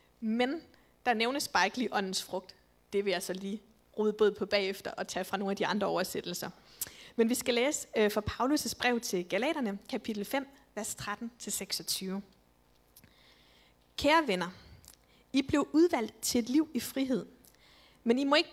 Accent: native